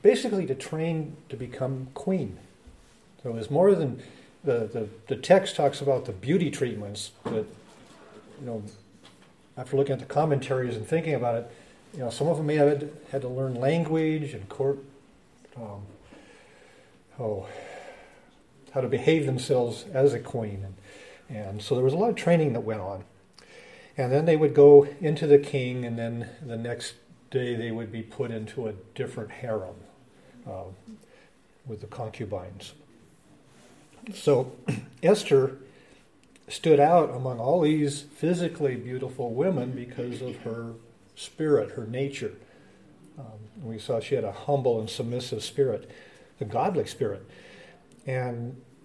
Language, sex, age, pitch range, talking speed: English, male, 50-69, 115-150 Hz, 150 wpm